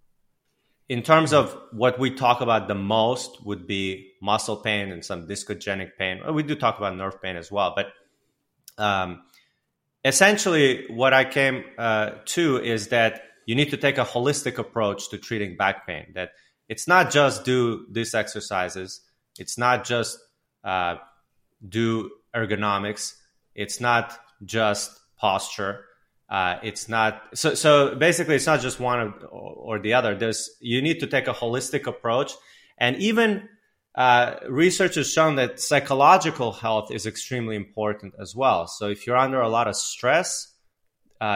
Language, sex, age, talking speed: English, male, 30-49, 155 wpm